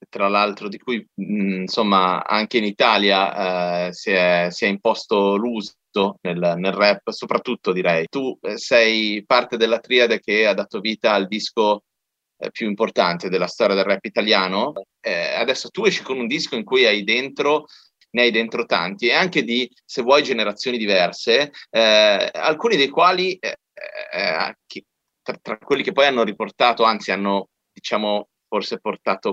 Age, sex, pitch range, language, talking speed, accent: 30-49, male, 100-140 Hz, Italian, 170 wpm, native